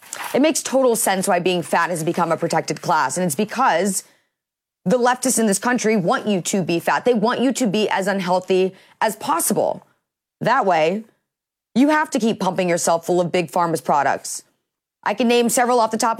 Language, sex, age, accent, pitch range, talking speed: English, female, 30-49, American, 170-215 Hz, 200 wpm